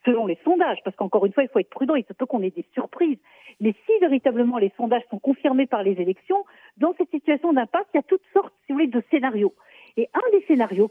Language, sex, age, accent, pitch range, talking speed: Russian, female, 50-69, French, 230-315 Hz, 255 wpm